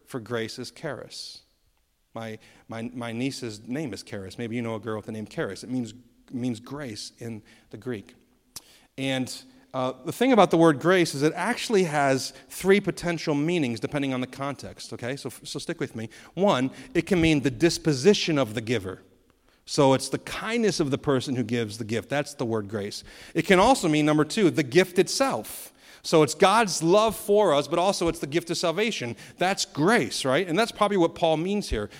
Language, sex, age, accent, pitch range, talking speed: English, male, 40-59, American, 115-165 Hz, 205 wpm